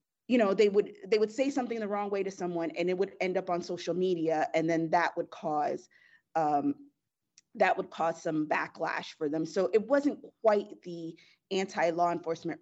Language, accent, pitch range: English, American, 175-245 Hz